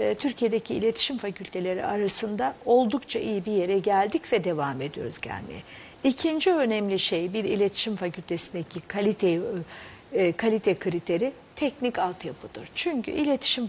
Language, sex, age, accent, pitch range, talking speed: Turkish, female, 60-79, native, 180-245 Hz, 115 wpm